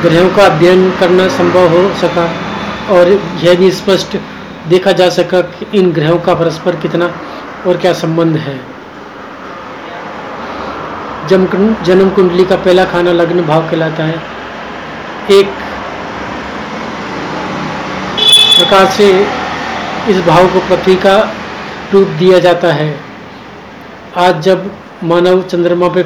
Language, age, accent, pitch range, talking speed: Hindi, 40-59, native, 170-185 Hz, 115 wpm